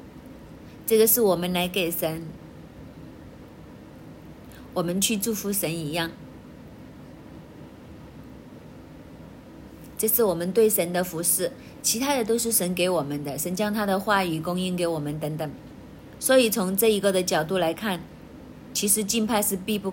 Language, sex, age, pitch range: Chinese, female, 30-49, 175-220 Hz